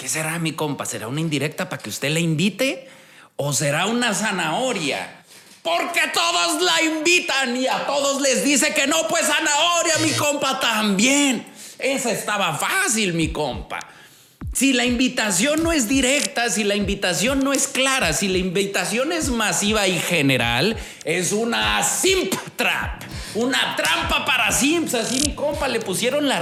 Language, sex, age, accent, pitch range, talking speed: Spanish, male, 40-59, Mexican, 175-270 Hz, 160 wpm